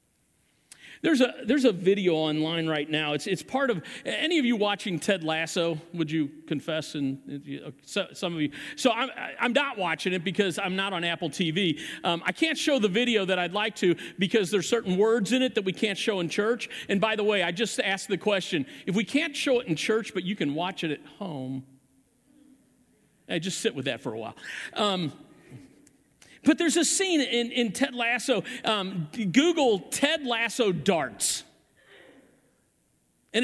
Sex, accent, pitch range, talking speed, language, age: male, American, 165-240 Hz, 195 wpm, English, 50-69